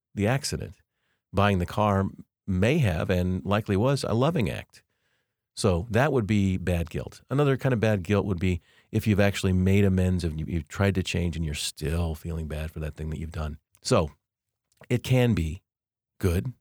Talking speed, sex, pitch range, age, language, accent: 190 wpm, male, 85-110 Hz, 40-59, English, American